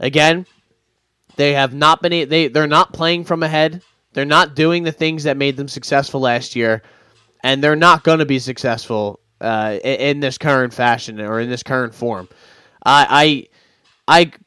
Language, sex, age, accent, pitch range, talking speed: English, male, 20-39, American, 115-150 Hz, 175 wpm